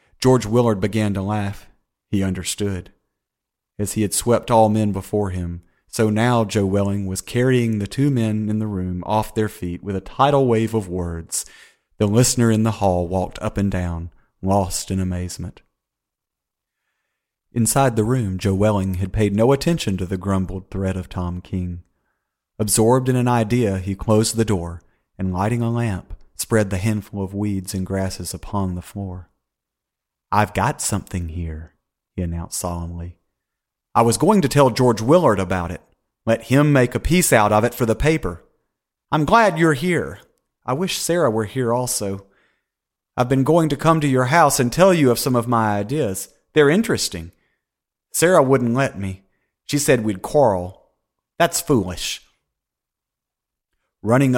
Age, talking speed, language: 40-59, 170 wpm, English